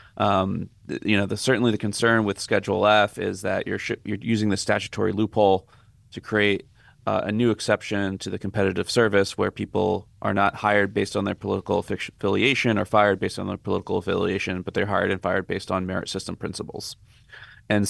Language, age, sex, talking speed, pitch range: English, 30-49, male, 190 wpm, 100-110 Hz